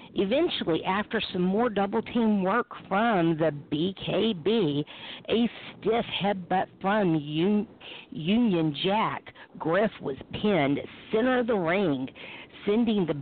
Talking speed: 115 wpm